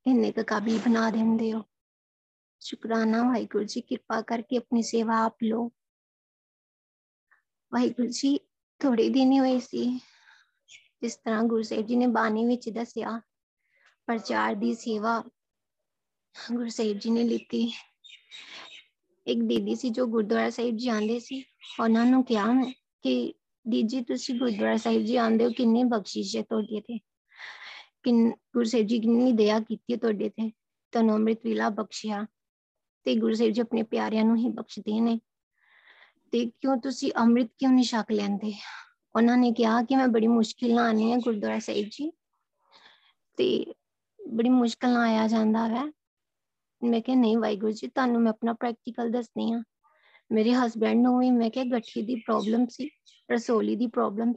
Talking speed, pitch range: 140 wpm, 225-245 Hz